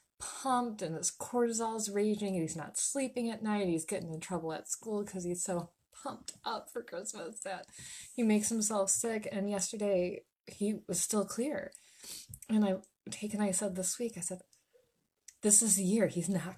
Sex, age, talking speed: female, 20-39, 190 wpm